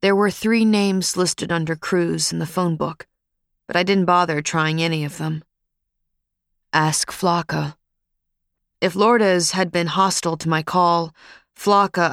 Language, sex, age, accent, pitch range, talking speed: English, female, 30-49, American, 155-190 Hz, 150 wpm